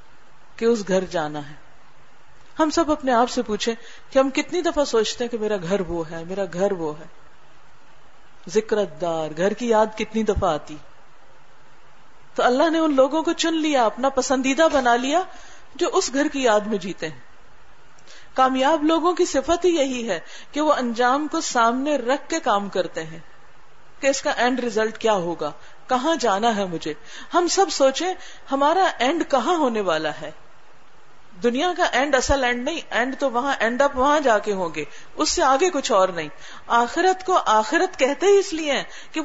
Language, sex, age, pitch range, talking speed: Urdu, female, 40-59, 205-285 Hz, 185 wpm